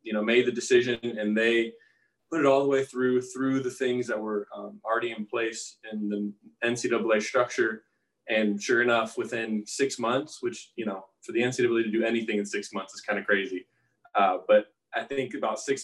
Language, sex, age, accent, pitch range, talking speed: English, male, 20-39, American, 105-125 Hz, 200 wpm